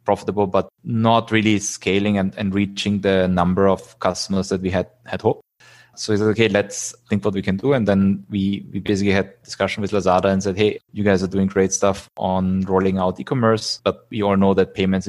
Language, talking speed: English, 225 wpm